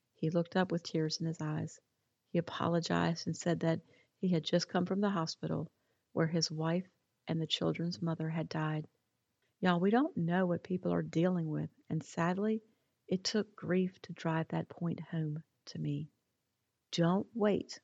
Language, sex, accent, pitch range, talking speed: English, female, American, 155-185 Hz, 175 wpm